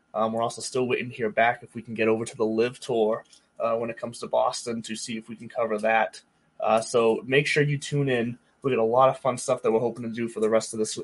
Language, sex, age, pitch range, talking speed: English, male, 20-39, 115-140 Hz, 295 wpm